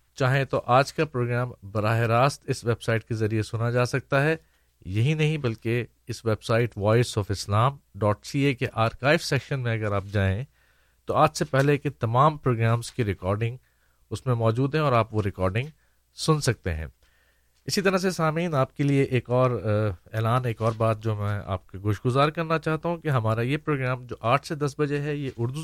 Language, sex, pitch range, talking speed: Urdu, male, 110-140 Hz, 195 wpm